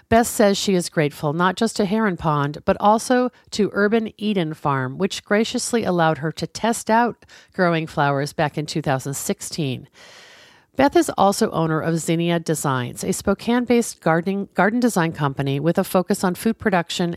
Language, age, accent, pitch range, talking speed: English, 50-69, American, 150-210 Hz, 165 wpm